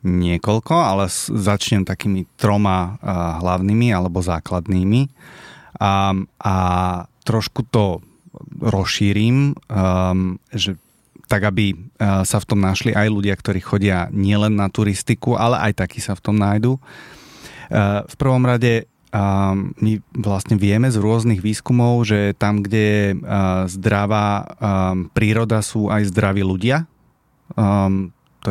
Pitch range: 95-115 Hz